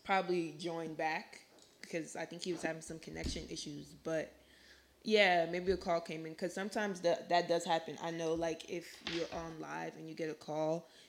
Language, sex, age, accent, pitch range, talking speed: English, female, 20-39, American, 160-195 Hz, 195 wpm